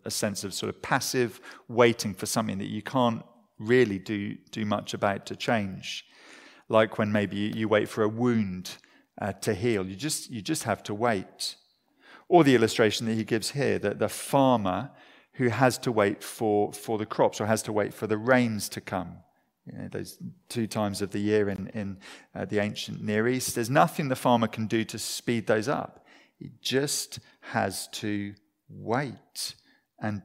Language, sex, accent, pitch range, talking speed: English, male, British, 105-130 Hz, 190 wpm